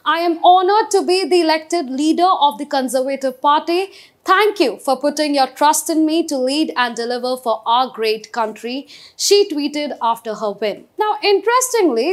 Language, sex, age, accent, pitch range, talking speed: English, female, 30-49, Indian, 255-340 Hz, 175 wpm